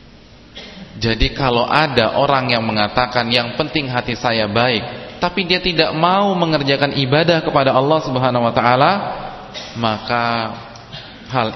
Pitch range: 110-150 Hz